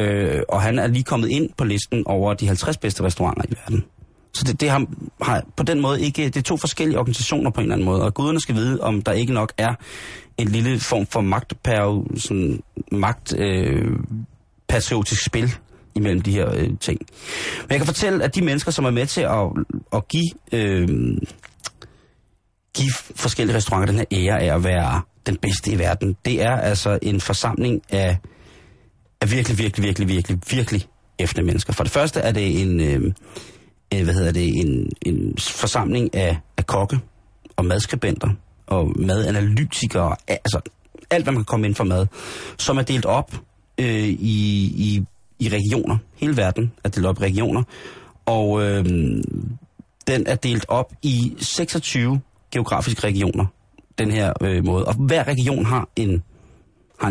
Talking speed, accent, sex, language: 170 wpm, native, male, Danish